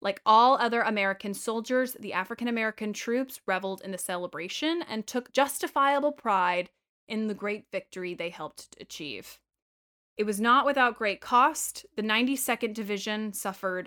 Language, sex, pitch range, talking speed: English, female, 195-245 Hz, 145 wpm